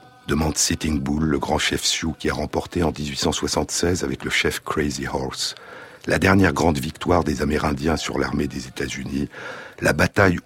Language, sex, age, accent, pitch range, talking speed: French, male, 60-79, French, 75-95 Hz, 170 wpm